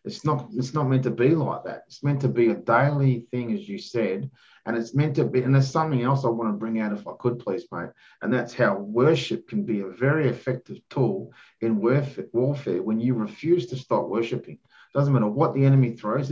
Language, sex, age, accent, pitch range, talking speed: English, male, 30-49, Australian, 115-140 Hz, 230 wpm